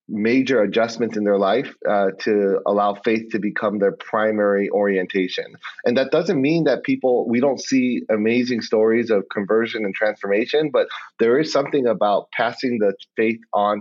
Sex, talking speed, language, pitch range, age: male, 165 wpm, English, 105-135 Hz, 30-49